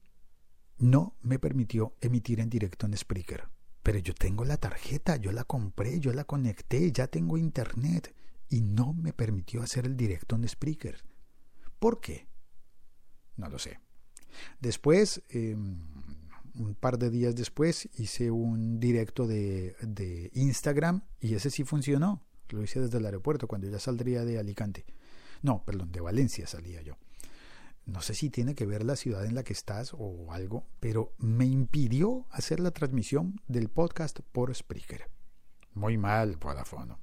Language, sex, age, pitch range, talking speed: Spanish, male, 50-69, 105-135 Hz, 155 wpm